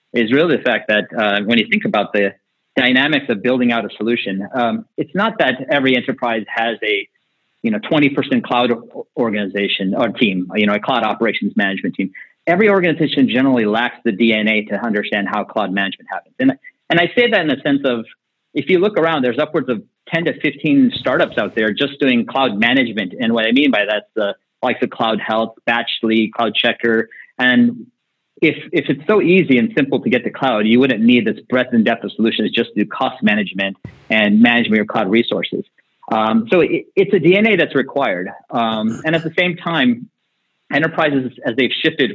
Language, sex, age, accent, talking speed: English, male, 40-59, American, 205 wpm